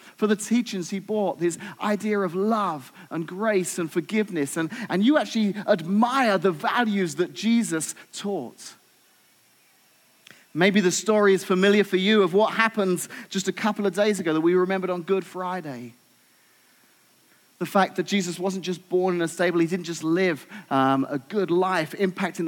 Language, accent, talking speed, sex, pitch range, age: English, British, 170 wpm, male, 180-220 Hz, 30-49